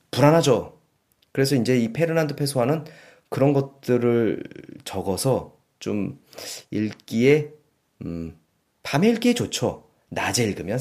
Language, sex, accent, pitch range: Korean, male, native, 100-145 Hz